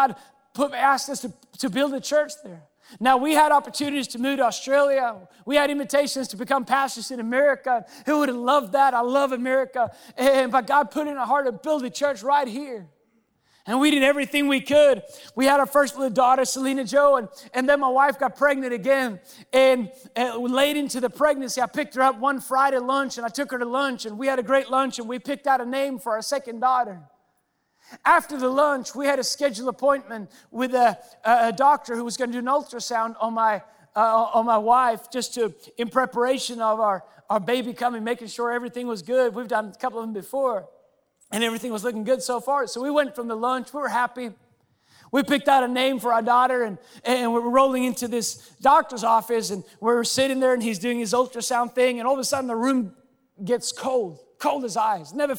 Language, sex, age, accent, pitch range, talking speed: English, male, 30-49, American, 235-275 Hz, 225 wpm